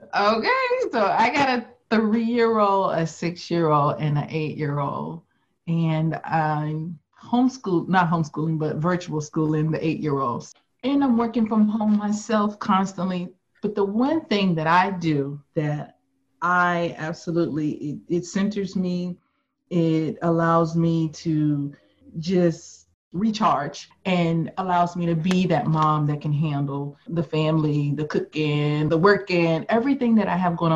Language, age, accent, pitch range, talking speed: English, 30-49, American, 155-200 Hz, 130 wpm